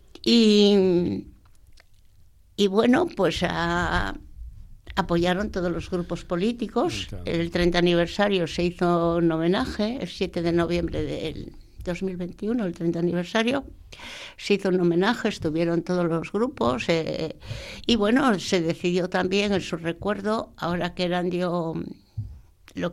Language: Spanish